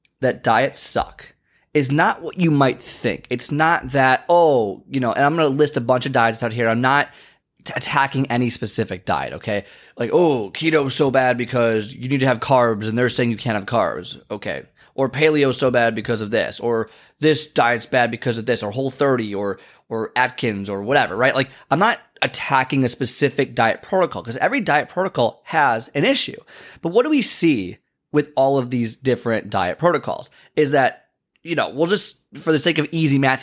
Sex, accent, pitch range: male, American, 125-155 Hz